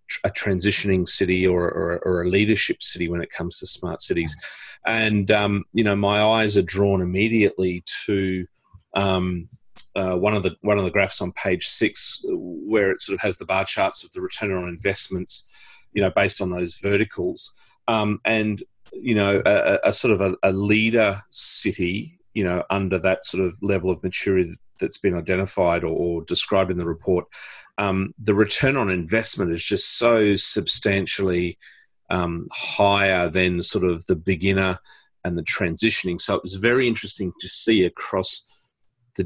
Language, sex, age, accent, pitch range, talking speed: English, male, 30-49, Australian, 90-105 Hz, 175 wpm